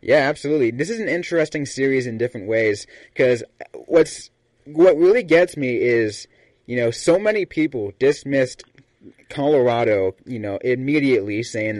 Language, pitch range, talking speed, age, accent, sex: English, 110-145 Hz, 140 wpm, 30-49, American, male